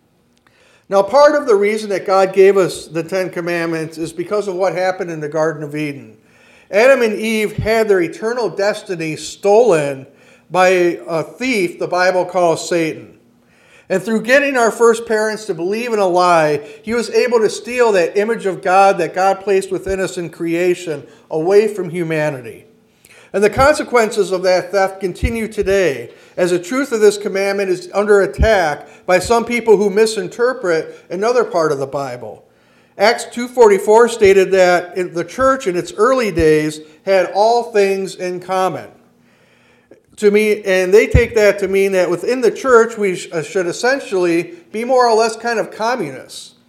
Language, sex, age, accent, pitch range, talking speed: English, male, 50-69, American, 175-225 Hz, 165 wpm